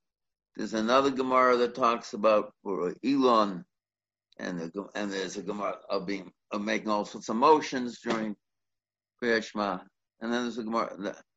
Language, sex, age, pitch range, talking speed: English, male, 60-79, 105-130 Hz, 150 wpm